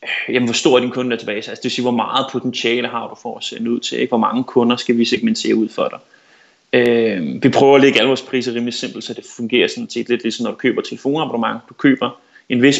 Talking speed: 265 wpm